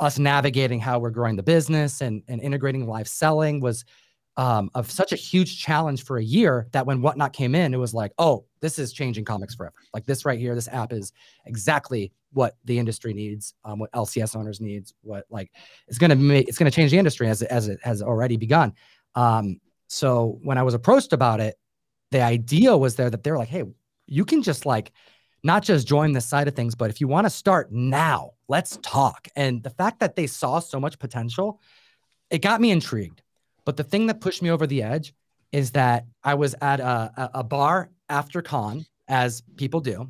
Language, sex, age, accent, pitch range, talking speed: English, male, 30-49, American, 115-150 Hz, 215 wpm